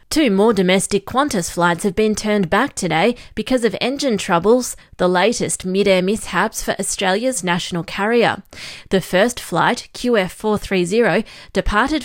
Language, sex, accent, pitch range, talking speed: English, female, Australian, 185-225 Hz, 135 wpm